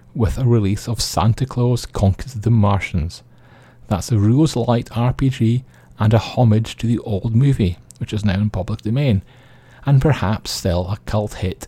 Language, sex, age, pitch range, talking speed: English, male, 30-49, 100-125 Hz, 170 wpm